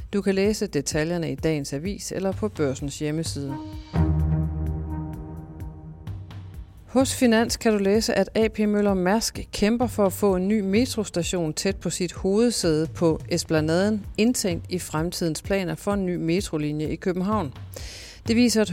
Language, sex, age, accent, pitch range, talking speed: Danish, female, 40-59, native, 145-195 Hz, 145 wpm